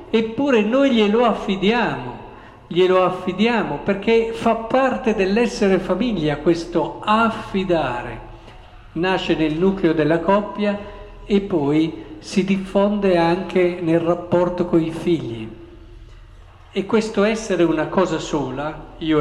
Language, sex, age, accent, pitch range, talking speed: Italian, male, 50-69, native, 150-200 Hz, 110 wpm